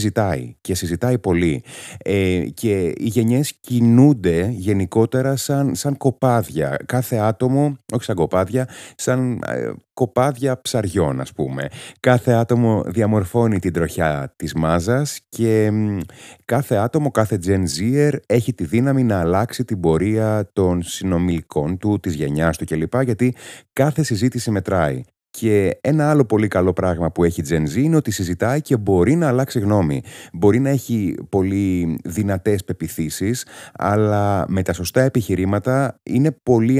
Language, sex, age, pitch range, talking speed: Greek, male, 30-49, 85-125 Hz, 140 wpm